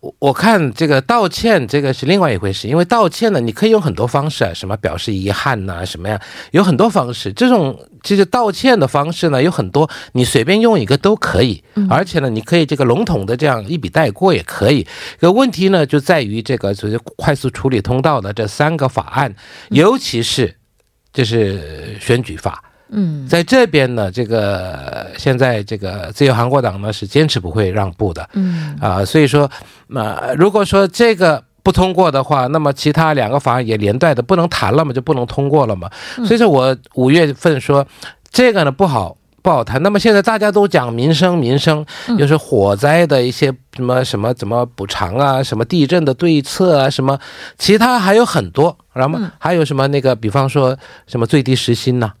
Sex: male